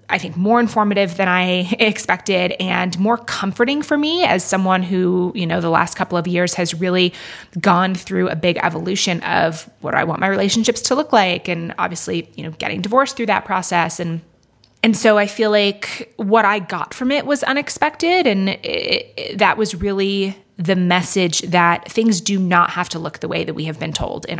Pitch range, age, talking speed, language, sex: 175-220 Hz, 20-39, 205 wpm, English, female